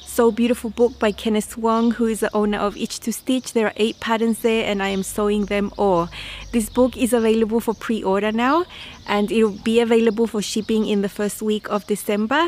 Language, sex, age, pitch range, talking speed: English, female, 20-39, 210-240 Hz, 210 wpm